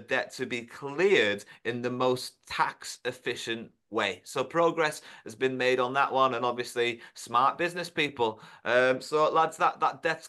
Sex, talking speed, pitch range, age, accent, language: male, 170 wpm, 120-150 Hz, 30-49, British, English